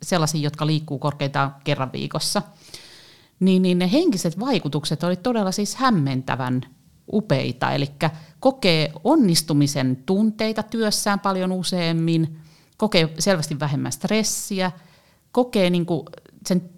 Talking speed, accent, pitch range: 105 wpm, native, 150-200 Hz